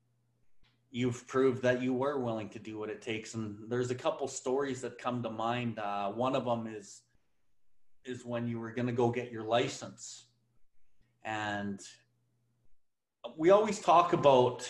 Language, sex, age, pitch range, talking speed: English, male, 30-49, 120-140 Hz, 165 wpm